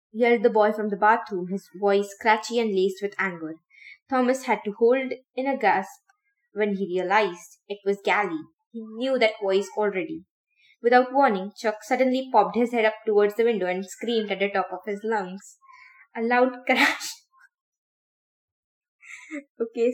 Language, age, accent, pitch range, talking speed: English, 20-39, Indian, 195-245 Hz, 165 wpm